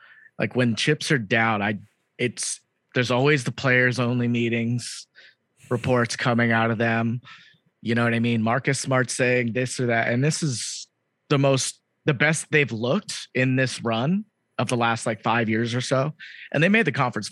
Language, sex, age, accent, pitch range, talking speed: English, male, 30-49, American, 115-135 Hz, 185 wpm